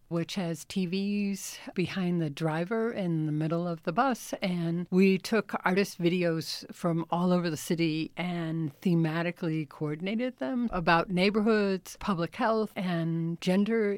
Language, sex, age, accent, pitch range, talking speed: English, female, 60-79, American, 165-200 Hz, 135 wpm